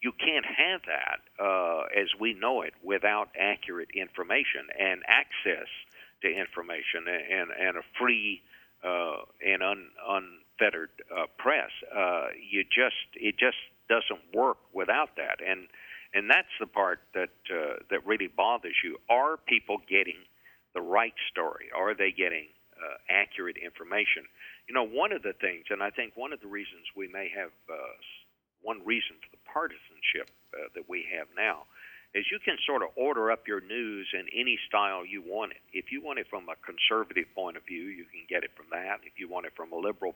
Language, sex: English, male